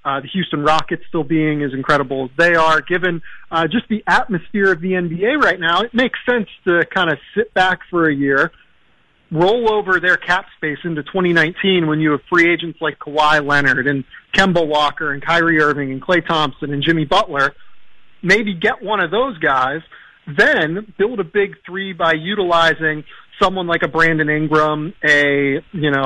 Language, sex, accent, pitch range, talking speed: English, male, American, 155-190 Hz, 185 wpm